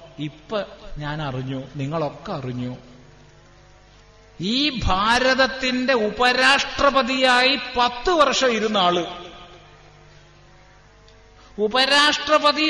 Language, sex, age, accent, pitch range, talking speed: Malayalam, male, 50-69, native, 165-265 Hz, 55 wpm